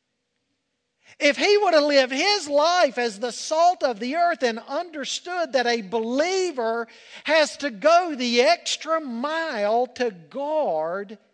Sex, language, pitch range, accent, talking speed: male, English, 225-310 Hz, American, 140 wpm